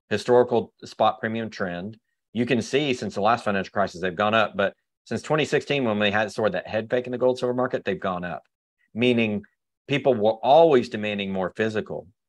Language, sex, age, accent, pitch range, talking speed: English, male, 40-59, American, 115-160 Hz, 200 wpm